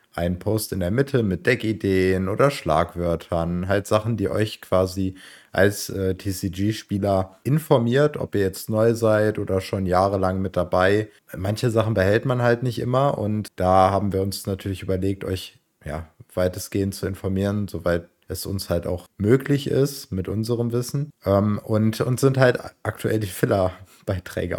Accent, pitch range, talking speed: German, 95-115 Hz, 160 wpm